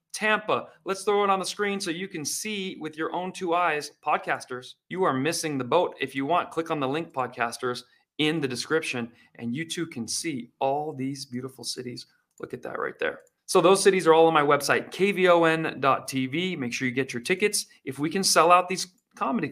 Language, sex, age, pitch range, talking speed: English, male, 30-49, 130-180 Hz, 210 wpm